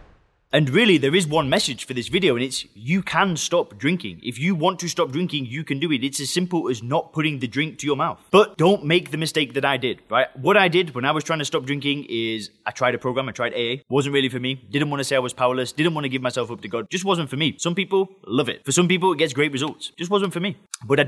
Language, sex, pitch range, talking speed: English, male, 130-170 Hz, 295 wpm